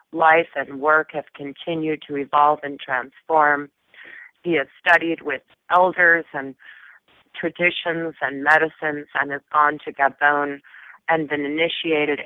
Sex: female